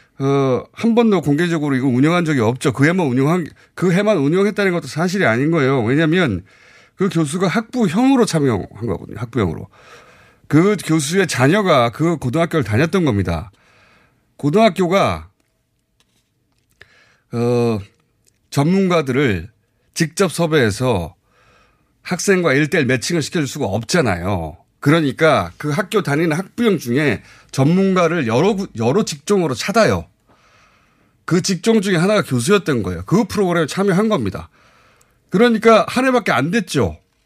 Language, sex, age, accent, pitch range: Korean, male, 30-49, native, 125-200 Hz